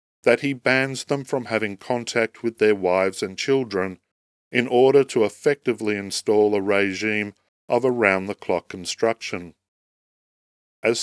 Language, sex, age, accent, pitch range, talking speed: English, male, 40-59, Australian, 95-125 Hz, 125 wpm